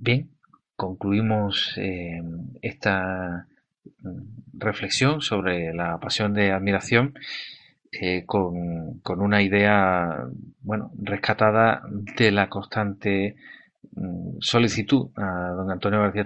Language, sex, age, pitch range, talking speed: Spanish, male, 30-49, 95-110 Hz, 95 wpm